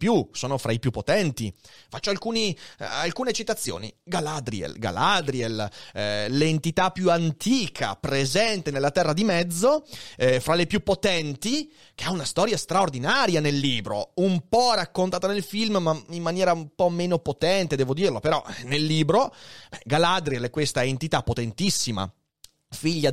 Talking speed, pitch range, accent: 150 wpm, 125-185 Hz, native